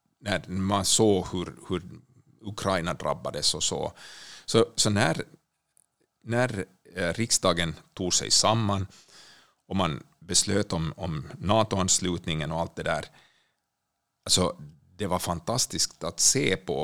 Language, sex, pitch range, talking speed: Swedish, male, 90-110 Hz, 120 wpm